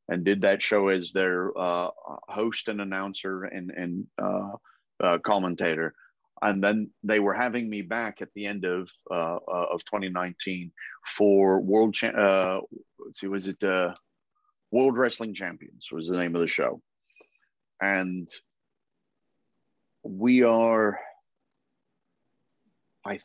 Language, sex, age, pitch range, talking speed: English, male, 30-49, 95-110 Hz, 130 wpm